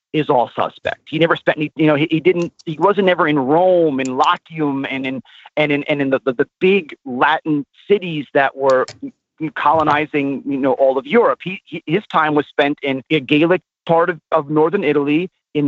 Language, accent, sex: English, American, male